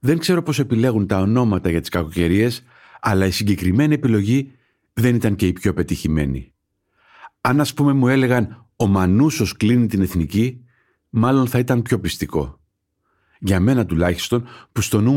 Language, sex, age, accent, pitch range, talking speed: Greek, male, 50-69, native, 95-130 Hz, 160 wpm